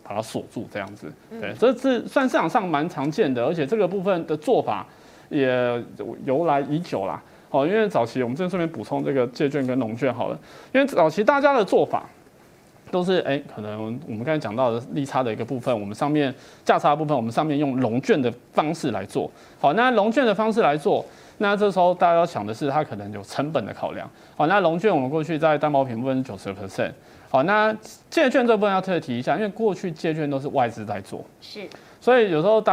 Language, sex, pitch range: Chinese, male, 120-185 Hz